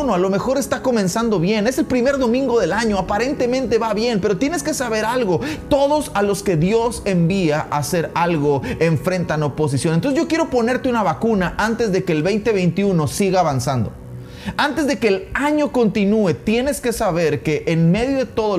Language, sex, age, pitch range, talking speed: Spanish, male, 30-49, 160-215 Hz, 185 wpm